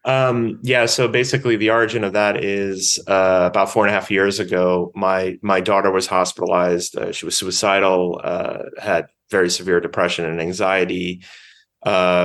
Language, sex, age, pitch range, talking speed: English, male, 30-49, 90-100 Hz, 165 wpm